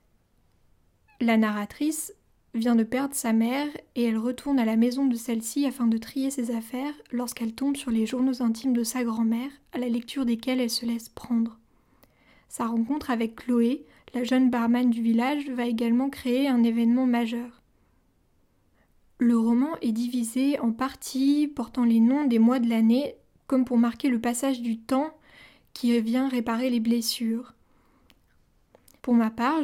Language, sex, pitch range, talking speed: French, female, 230-265 Hz, 160 wpm